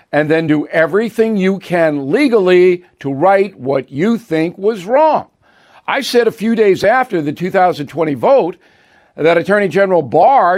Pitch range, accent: 160-200 Hz, American